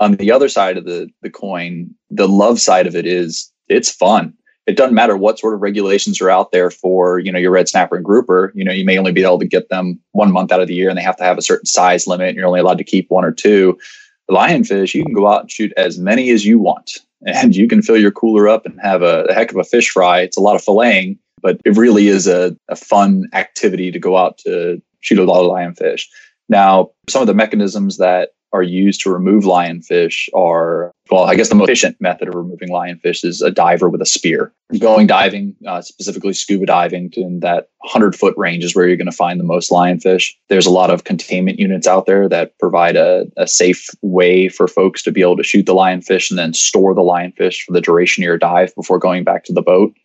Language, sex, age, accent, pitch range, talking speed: English, male, 20-39, American, 90-105 Hz, 250 wpm